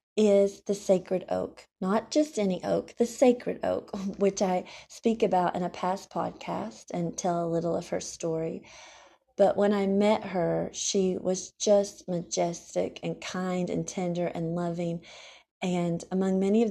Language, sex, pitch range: English, female, 175-205 Hz